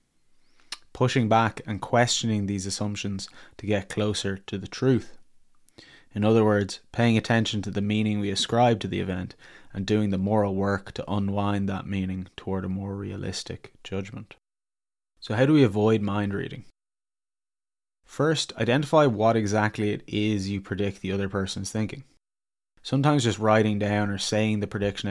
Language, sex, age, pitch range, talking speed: English, male, 20-39, 95-110 Hz, 160 wpm